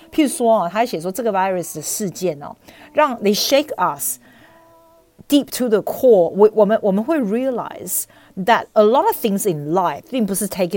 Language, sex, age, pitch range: Chinese, female, 40-59, 170-245 Hz